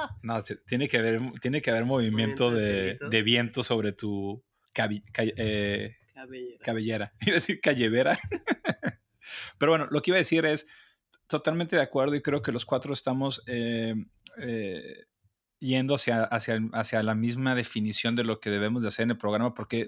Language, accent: Spanish, Mexican